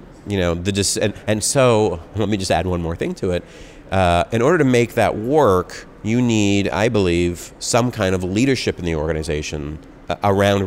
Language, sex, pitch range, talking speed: Polish, male, 85-105 Hz, 200 wpm